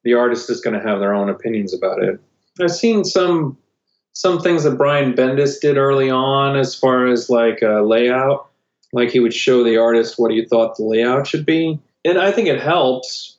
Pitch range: 110-140 Hz